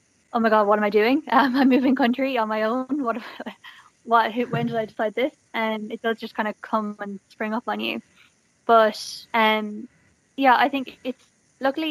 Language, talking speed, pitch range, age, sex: English, 205 wpm, 215-245 Hz, 10-29, female